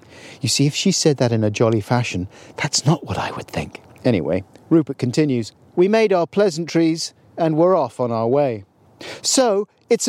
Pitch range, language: 125-175 Hz, English